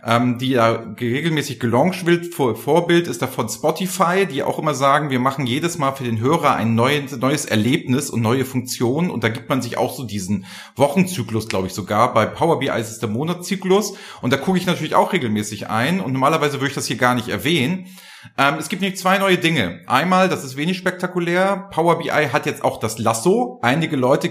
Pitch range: 120-175 Hz